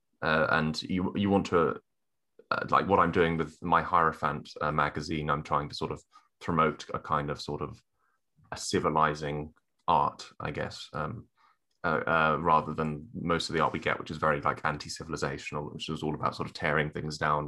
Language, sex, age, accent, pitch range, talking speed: English, male, 20-39, British, 75-85 Hz, 195 wpm